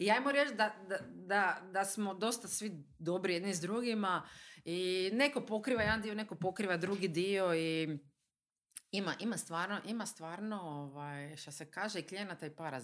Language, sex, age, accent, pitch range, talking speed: Croatian, female, 40-59, native, 165-215 Hz, 165 wpm